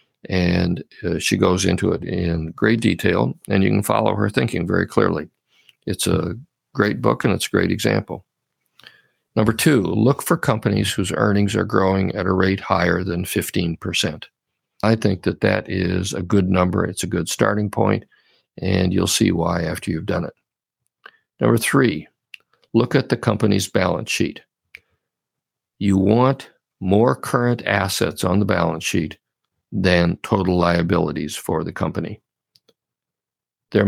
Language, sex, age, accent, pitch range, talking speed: English, male, 50-69, American, 90-110 Hz, 150 wpm